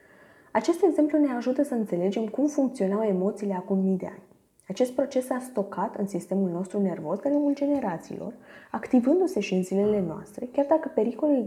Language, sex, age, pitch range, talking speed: Romanian, female, 20-39, 190-245 Hz, 165 wpm